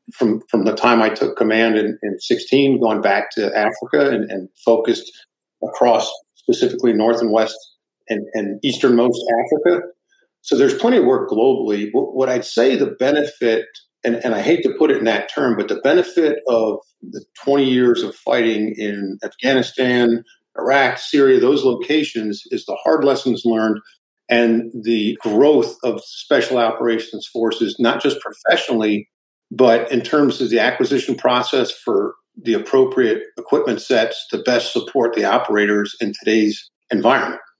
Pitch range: 110-135 Hz